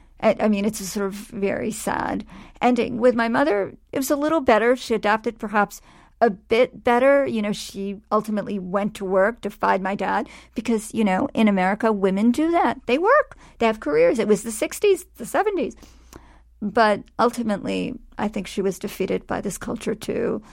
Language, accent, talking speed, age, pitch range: English, American, 185 wpm, 50-69, 200-240 Hz